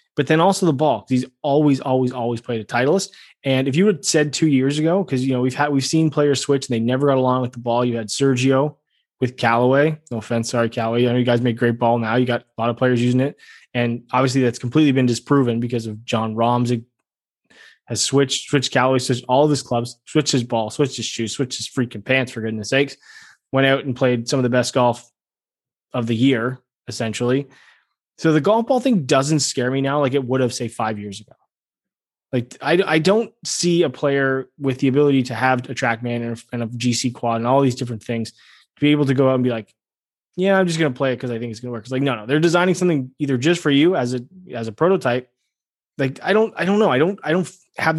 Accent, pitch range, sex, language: American, 120-155 Hz, male, English